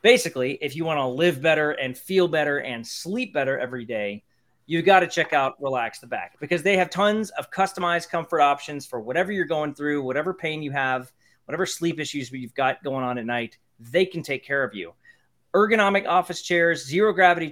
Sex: male